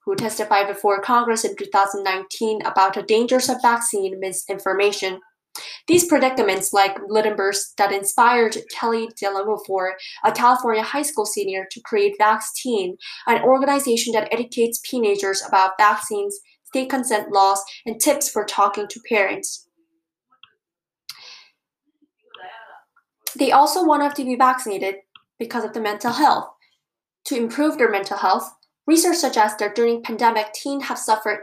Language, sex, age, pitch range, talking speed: English, female, 10-29, 200-255 Hz, 130 wpm